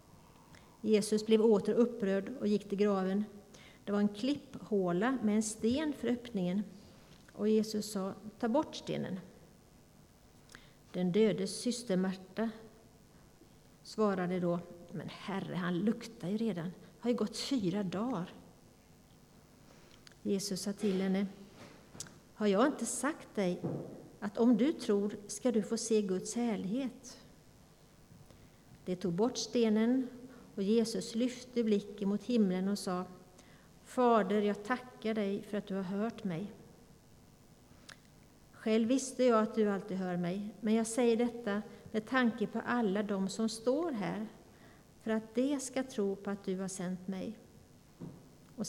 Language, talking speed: Swedish, 140 wpm